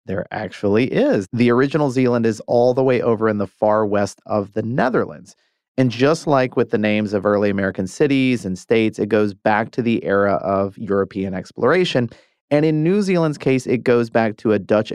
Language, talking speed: English, 200 wpm